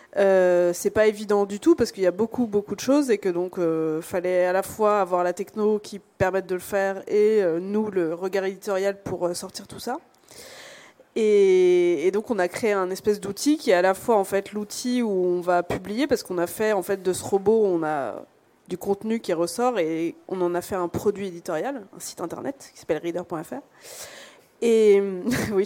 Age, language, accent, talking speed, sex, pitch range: 20-39, French, French, 215 wpm, female, 185-220 Hz